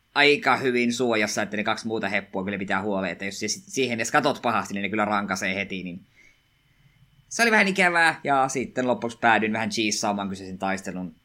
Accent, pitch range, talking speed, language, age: native, 100-120 Hz, 185 wpm, Finnish, 20-39